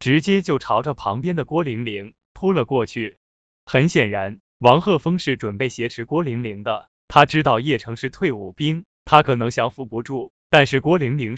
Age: 20-39